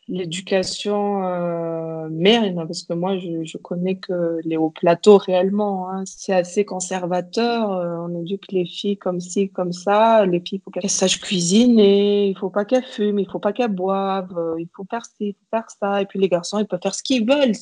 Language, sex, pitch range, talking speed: French, female, 180-210 Hz, 195 wpm